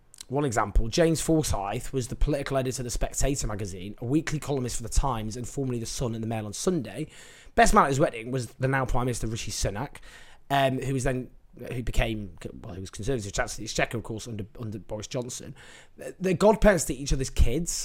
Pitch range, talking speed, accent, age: 115-165 Hz, 220 wpm, British, 20-39